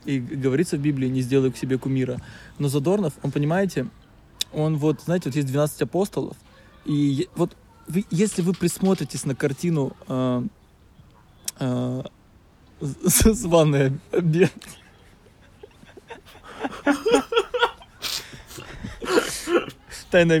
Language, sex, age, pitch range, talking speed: Russian, male, 20-39, 130-165 Hz, 115 wpm